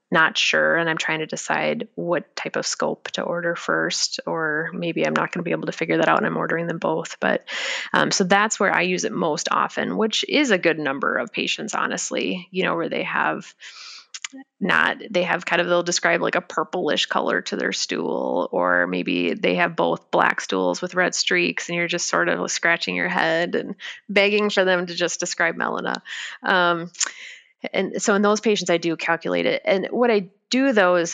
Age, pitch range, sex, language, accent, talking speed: 20-39, 160-185 Hz, female, English, American, 210 wpm